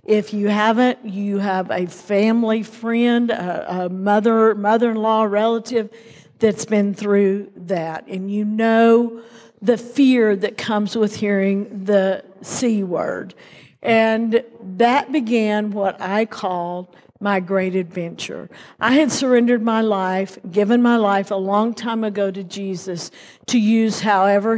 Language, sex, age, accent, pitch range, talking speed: English, female, 50-69, American, 195-235 Hz, 135 wpm